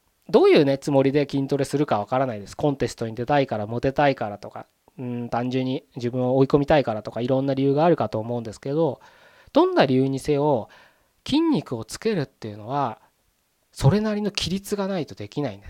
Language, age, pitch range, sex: Japanese, 20-39, 115-160 Hz, male